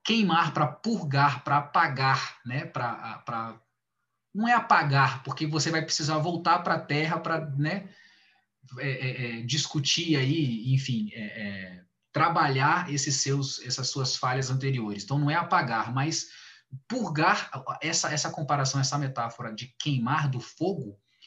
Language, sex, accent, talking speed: Portuguese, male, Brazilian, 140 wpm